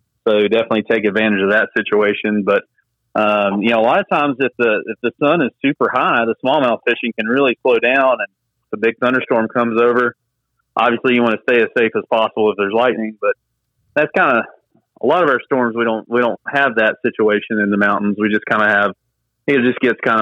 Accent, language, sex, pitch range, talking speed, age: American, English, male, 105-125 Hz, 225 wpm, 30-49